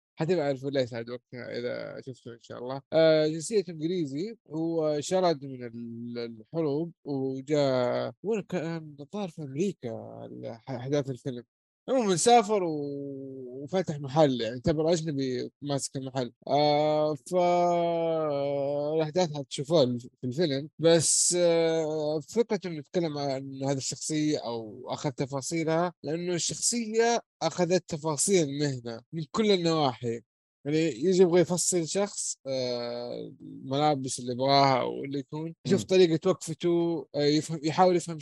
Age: 20-39